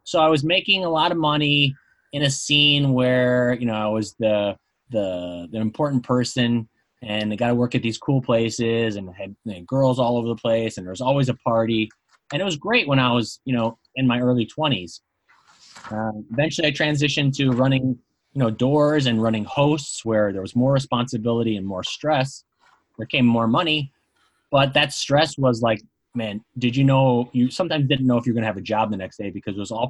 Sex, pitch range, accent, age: male, 105-130 Hz, American, 20-39